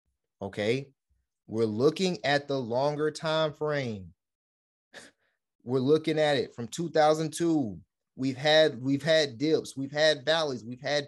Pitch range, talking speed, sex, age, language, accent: 120-150 Hz, 130 wpm, male, 30-49, English, American